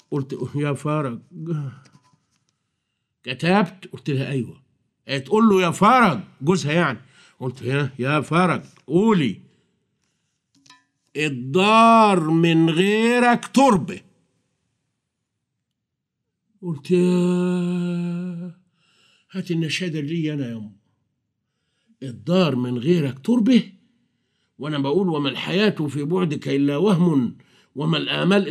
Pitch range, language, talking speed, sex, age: 130-220 Hz, Arabic, 90 wpm, male, 50-69